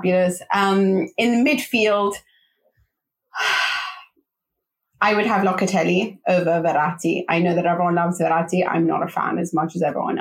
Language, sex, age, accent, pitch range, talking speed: English, female, 20-39, British, 170-195 Hz, 140 wpm